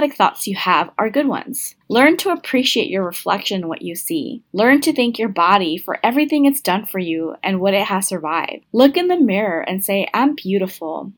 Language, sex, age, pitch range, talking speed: English, female, 20-39, 185-250 Hz, 210 wpm